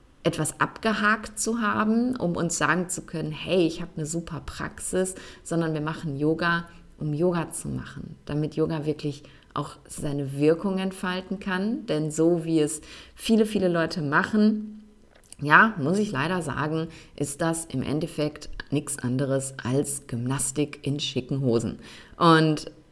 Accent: German